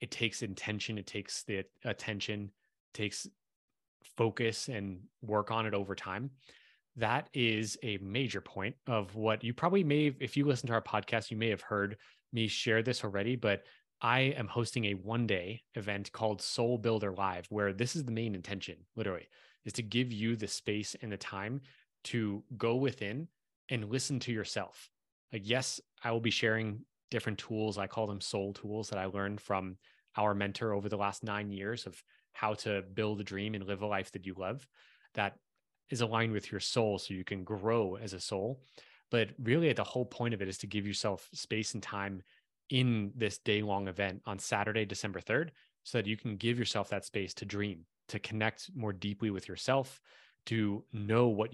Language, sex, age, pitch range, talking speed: English, male, 20-39, 100-115 Hz, 195 wpm